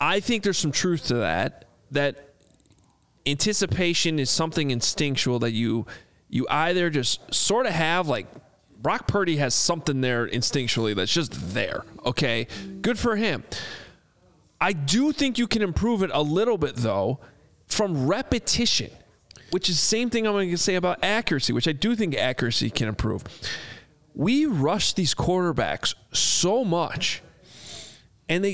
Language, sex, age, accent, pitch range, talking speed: English, male, 30-49, American, 130-185 Hz, 150 wpm